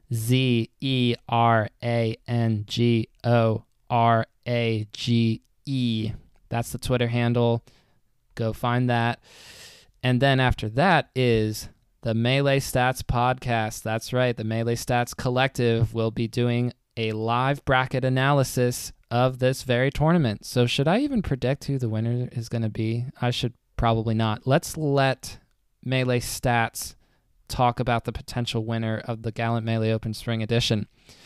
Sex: male